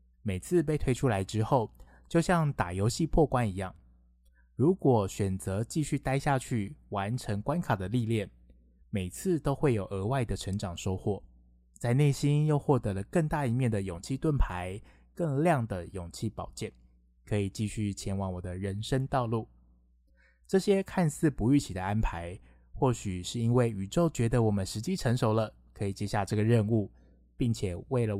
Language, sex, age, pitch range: Chinese, male, 20-39, 95-135 Hz